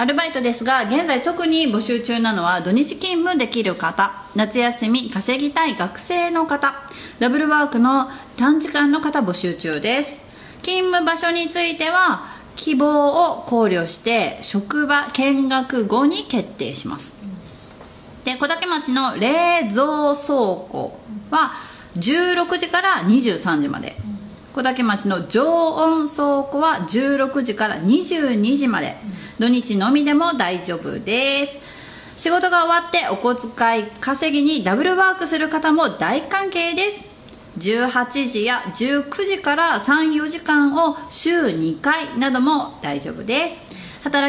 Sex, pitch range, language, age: female, 205-300 Hz, Japanese, 30-49